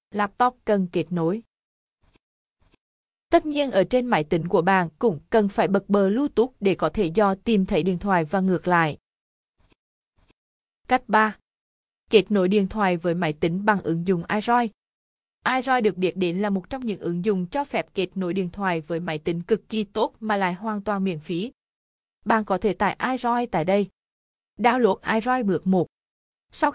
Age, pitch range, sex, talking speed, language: 20-39, 180-225 Hz, female, 185 wpm, Vietnamese